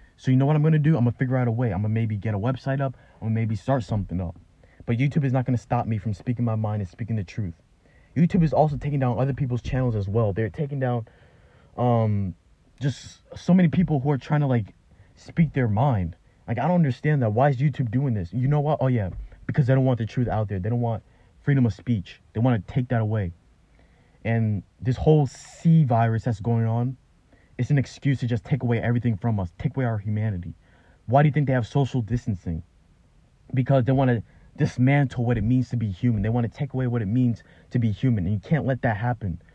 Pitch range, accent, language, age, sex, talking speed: 110-135 Hz, American, English, 20-39, male, 245 wpm